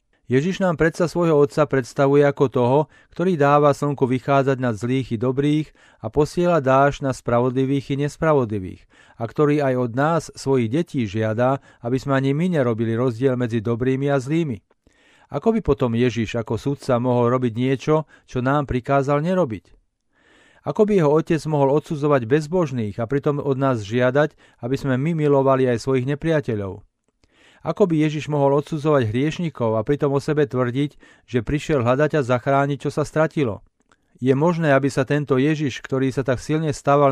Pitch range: 125-150 Hz